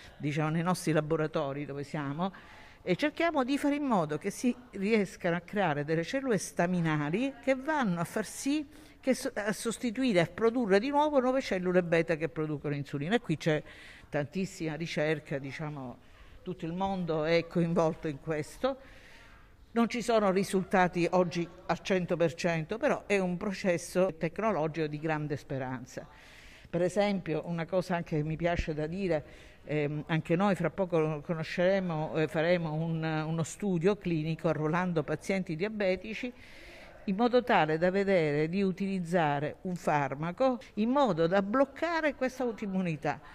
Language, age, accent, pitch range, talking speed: Italian, 50-69, native, 160-210 Hz, 150 wpm